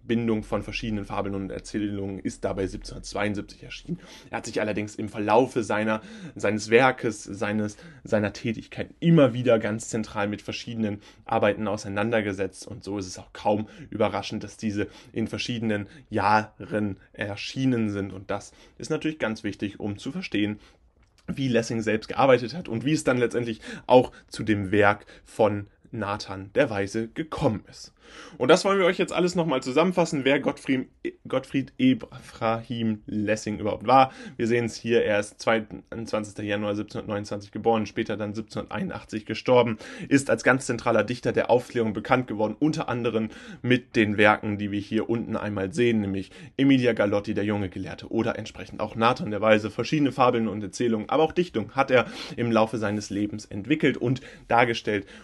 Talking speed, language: 165 wpm, German